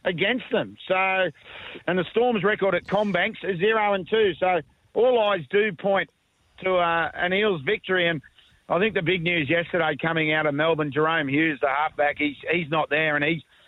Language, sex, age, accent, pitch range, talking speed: English, male, 50-69, Australian, 160-195 Hz, 195 wpm